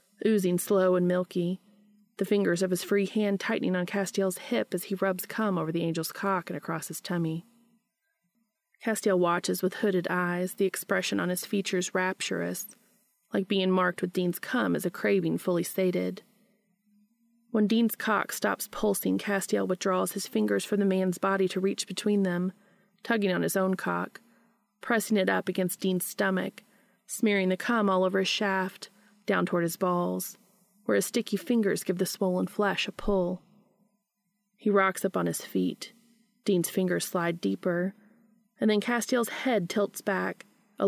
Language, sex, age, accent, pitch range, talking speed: English, female, 30-49, American, 185-210 Hz, 165 wpm